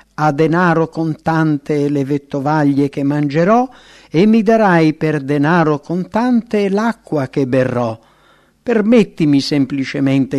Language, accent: English, Italian